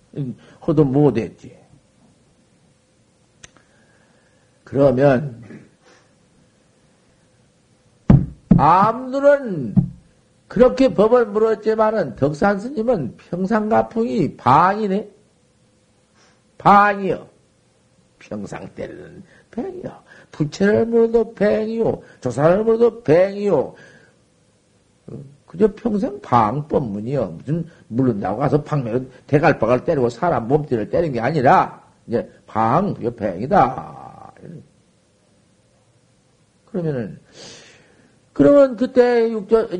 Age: 50-69